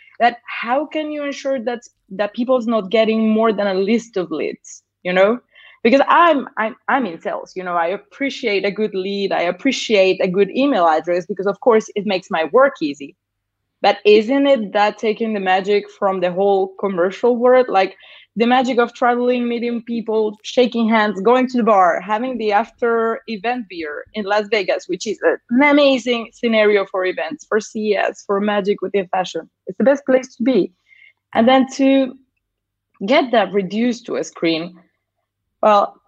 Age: 20-39